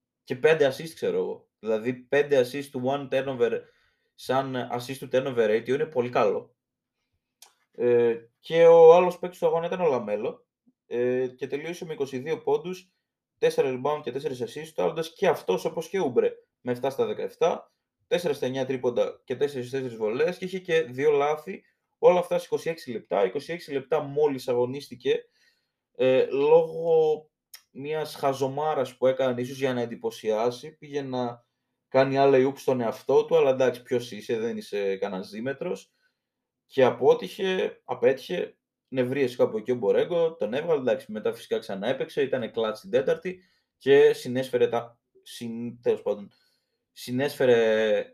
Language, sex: Greek, male